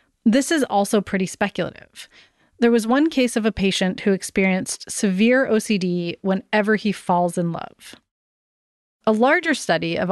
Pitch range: 185-245 Hz